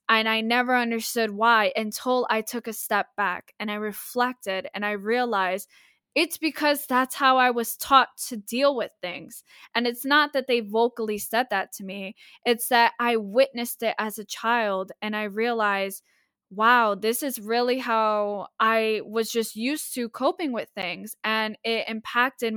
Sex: female